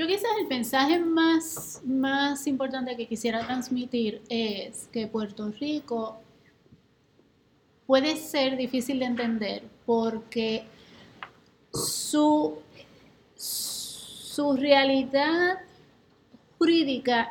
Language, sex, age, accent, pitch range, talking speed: Spanish, female, 30-49, American, 230-285 Hz, 85 wpm